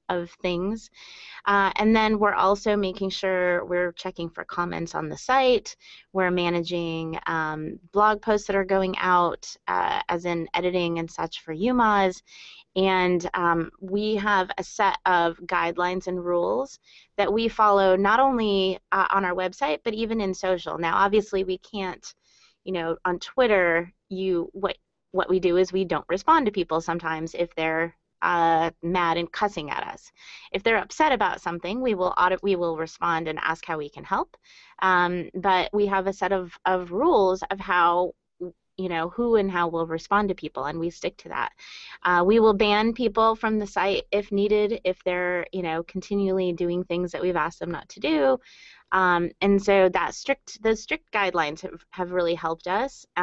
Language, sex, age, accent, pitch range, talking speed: English, female, 30-49, American, 175-205 Hz, 185 wpm